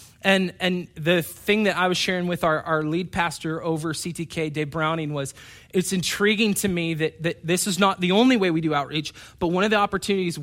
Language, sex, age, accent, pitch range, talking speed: English, male, 20-39, American, 140-175 Hz, 220 wpm